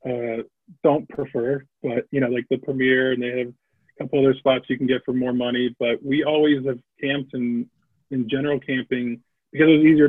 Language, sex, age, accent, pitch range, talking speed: English, male, 20-39, American, 120-140 Hz, 200 wpm